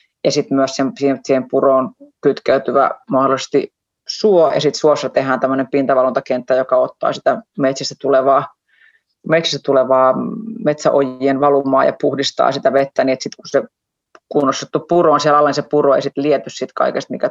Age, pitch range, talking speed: 30-49, 135-160 Hz, 155 wpm